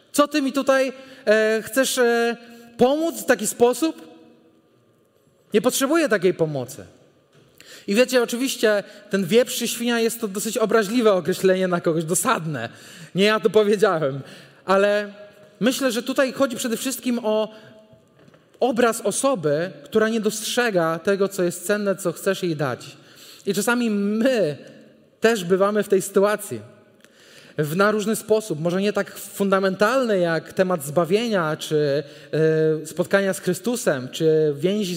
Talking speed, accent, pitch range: 140 wpm, native, 180-235 Hz